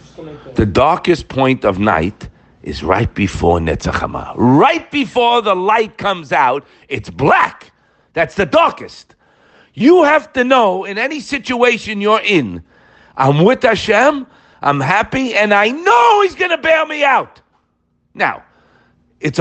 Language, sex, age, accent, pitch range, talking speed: English, male, 50-69, American, 125-195 Hz, 140 wpm